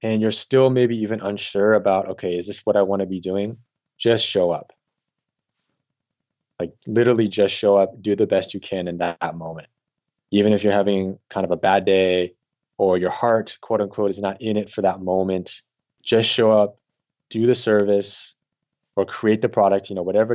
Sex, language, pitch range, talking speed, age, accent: male, English, 95-115 Hz, 200 wpm, 20-39, American